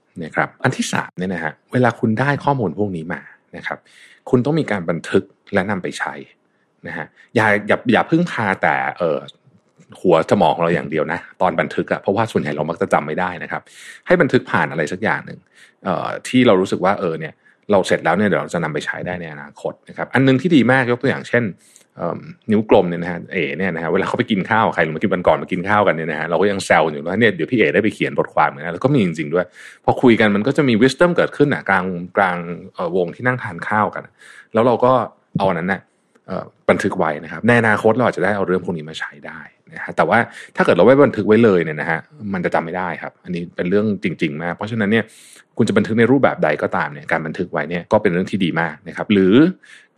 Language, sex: Thai, male